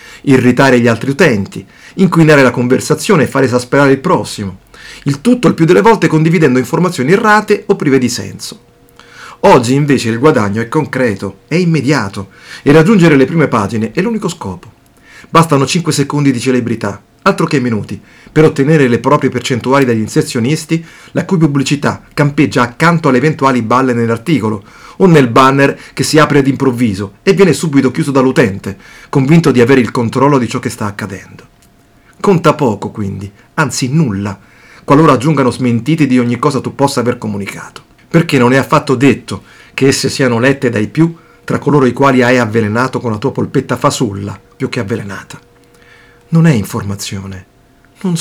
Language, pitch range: Italian, 120-150 Hz